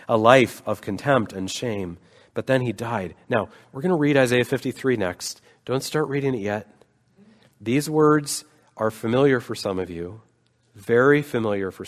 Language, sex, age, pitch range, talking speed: English, male, 40-59, 110-140 Hz, 170 wpm